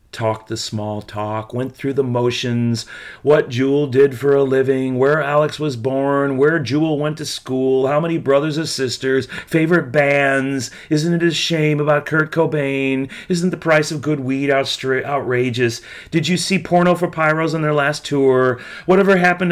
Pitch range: 110-150 Hz